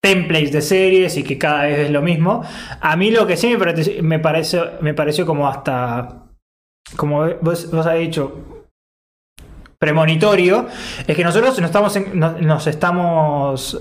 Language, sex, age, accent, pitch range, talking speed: Spanish, male, 20-39, Argentinian, 150-190 Hz, 150 wpm